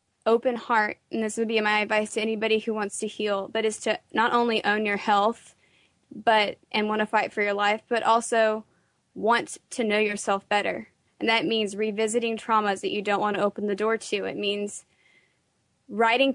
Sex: female